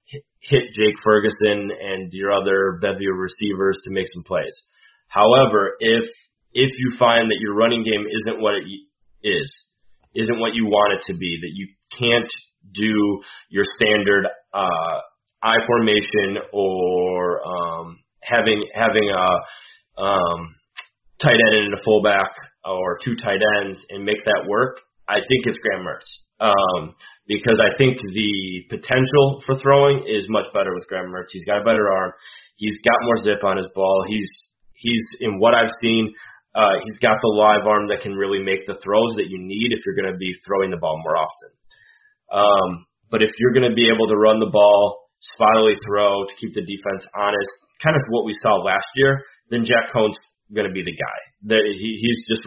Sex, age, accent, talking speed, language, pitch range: male, 30-49, American, 180 wpm, English, 100-115 Hz